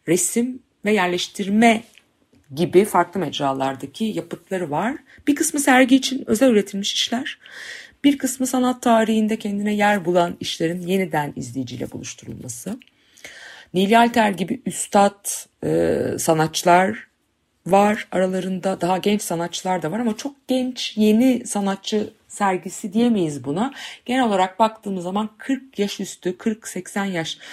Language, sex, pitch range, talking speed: Turkish, female, 160-220 Hz, 120 wpm